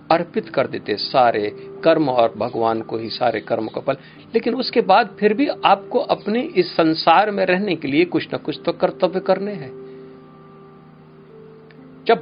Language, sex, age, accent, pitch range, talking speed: Hindi, male, 50-69, native, 110-175 Hz, 165 wpm